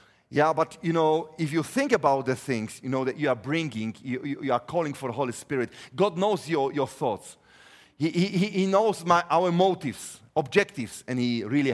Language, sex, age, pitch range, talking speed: English, male, 40-59, 130-190 Hz, 205 wpm